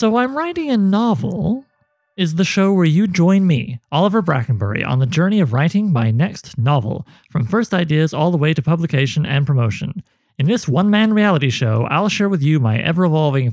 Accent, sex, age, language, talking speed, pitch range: American, male, 30-49, English, 190 wpm, 140-200 Hz